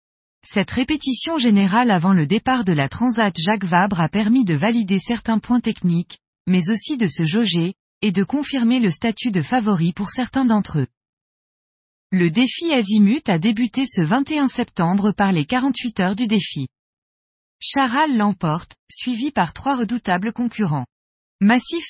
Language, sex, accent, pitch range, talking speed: French, female, French, 180-245 Hz, 155 wpm